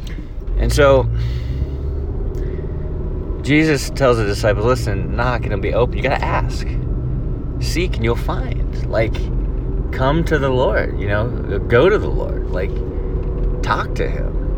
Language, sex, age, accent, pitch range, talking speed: English, male, 30-49, American, 85-120 Hz, 145 wpm